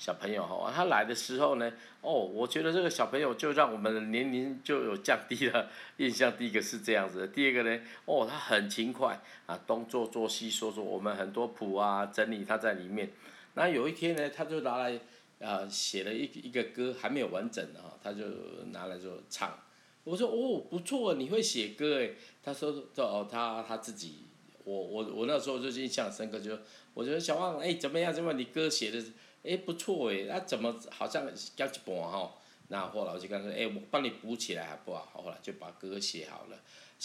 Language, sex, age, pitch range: Chinese, male, 50-69, 110-145 Hz